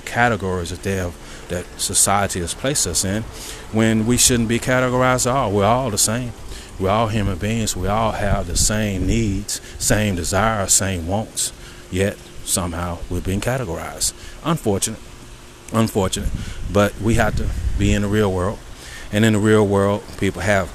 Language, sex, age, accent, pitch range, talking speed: English, male, 30-49, American, 90-110 Hz, 170 wpm